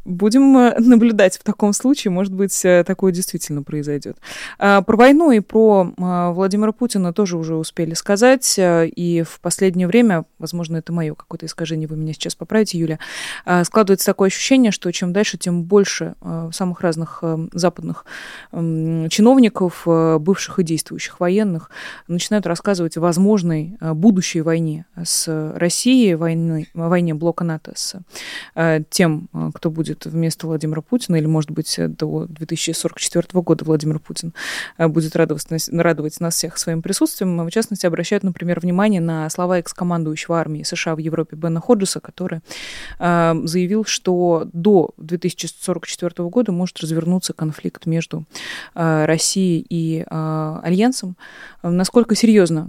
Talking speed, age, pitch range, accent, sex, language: 130 wpm, 20-39, 160-190 Hz, native, female, Russian